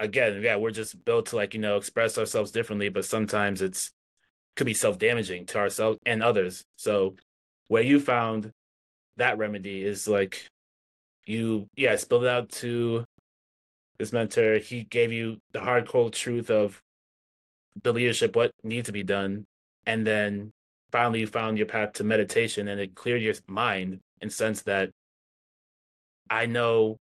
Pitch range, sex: 95-115 Hz, male